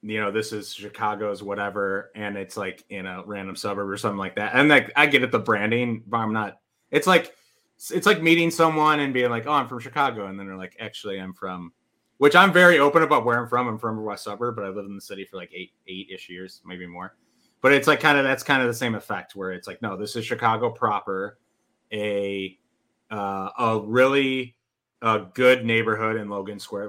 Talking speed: 230 wpm